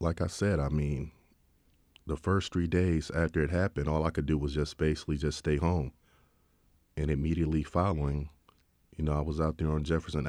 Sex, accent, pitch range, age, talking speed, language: male, American, 70-80 Hz, 40-59, 190 wpm, English